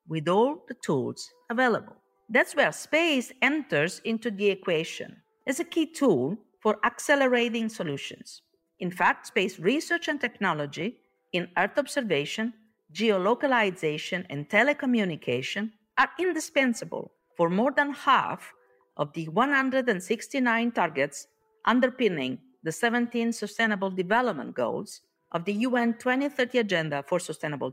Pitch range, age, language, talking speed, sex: 180-260 Hz, 50-69, Italian, 115 wpm, female